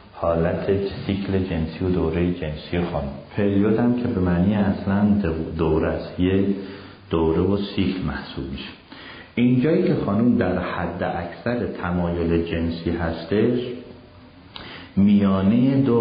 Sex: male